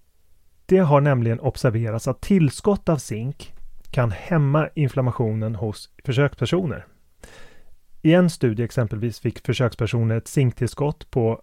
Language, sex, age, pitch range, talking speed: Swedish, male, 30-49, 110-140 Hz, 115 wpm